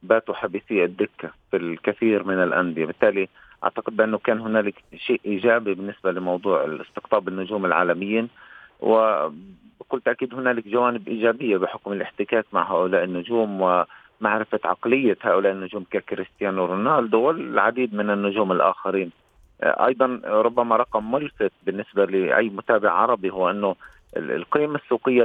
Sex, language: male, Arabic